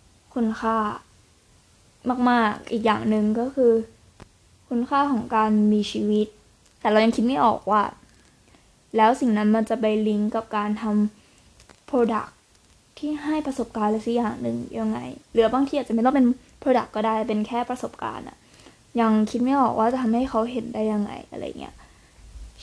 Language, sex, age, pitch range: Thai, female, 20-39, 220-245 Hz